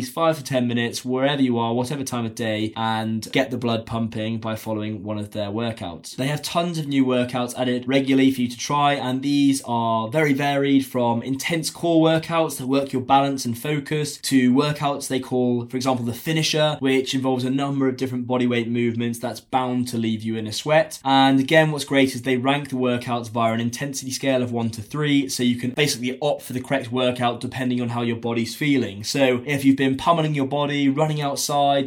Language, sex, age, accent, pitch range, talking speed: English, male, 10-29, British, 120-140 Hz, 215 wpm